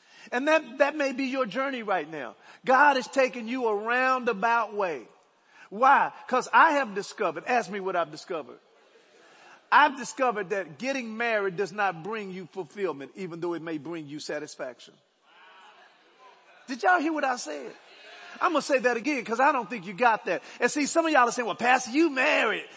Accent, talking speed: American, 190 wpm